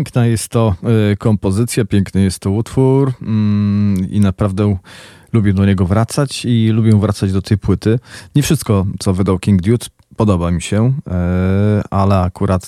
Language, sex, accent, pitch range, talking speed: Polish, male, native, 95-115 Hz, 145 wpm